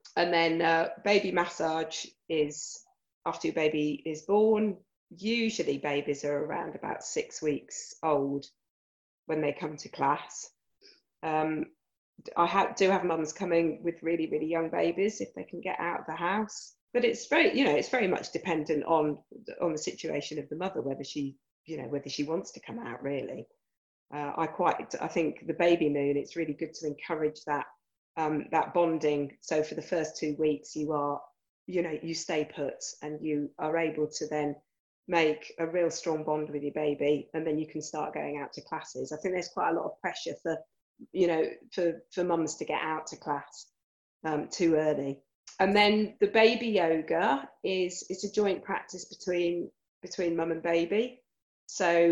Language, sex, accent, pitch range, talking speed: English, female, British, 150-185 Hz, 185 wpm